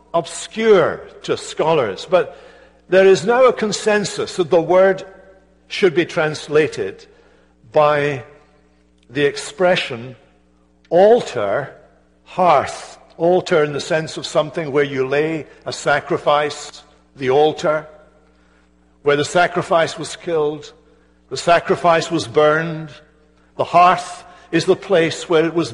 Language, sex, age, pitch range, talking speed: English, male, 60-79, 145-195 Hz, 115 wpm